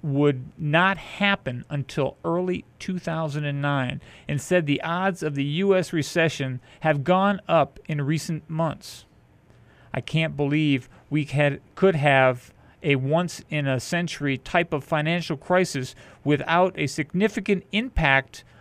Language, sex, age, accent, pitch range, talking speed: English, male, 40-59, American, 135-170 Hz, 120 wpm